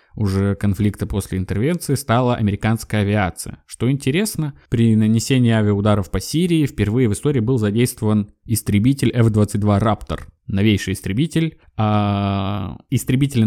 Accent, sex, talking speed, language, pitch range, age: native, male, 115 wpm, Russian, 105-135 Hz, 20-39